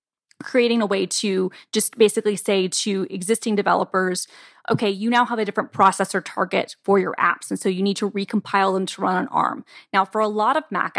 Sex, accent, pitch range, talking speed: female, American, 190-215 Hz, 210 wpm